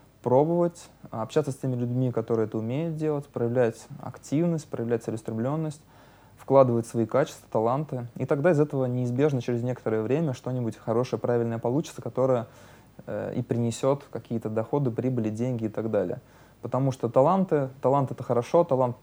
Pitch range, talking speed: 115-135 Hz, 150 wpm